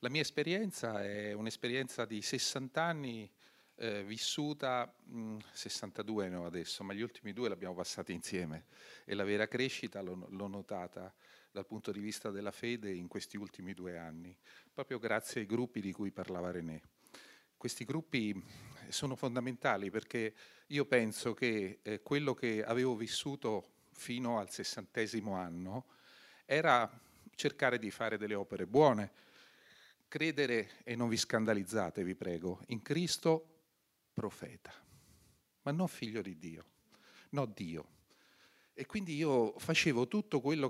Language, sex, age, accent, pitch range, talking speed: Italian, male, 40-59, native, 100-140 Hz, 135 wpm